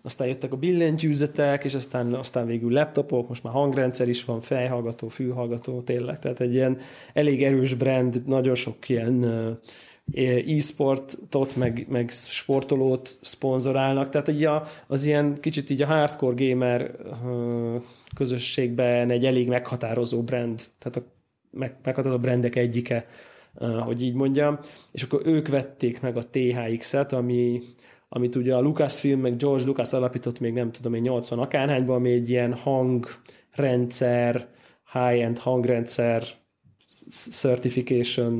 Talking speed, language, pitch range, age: 130 wpm, Hungarian, 120-135 Hz, 20-39